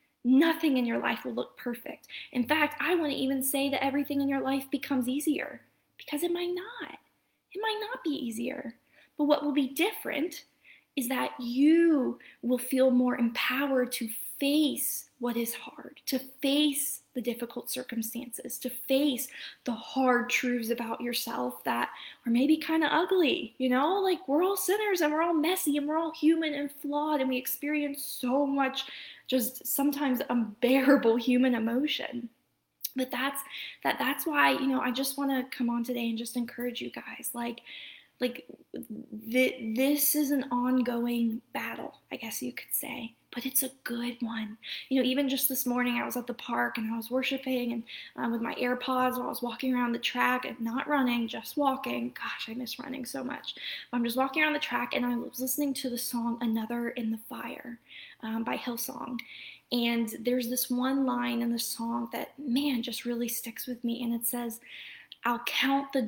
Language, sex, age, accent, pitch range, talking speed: English, female, 10-29, American, 240-285 Hz, 190 wpm